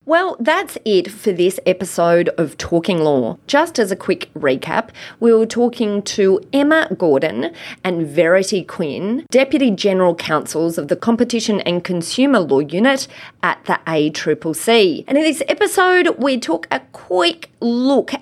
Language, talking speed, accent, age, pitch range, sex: English, 150 wpm, Australian, 30-49, 170-260 Hz, female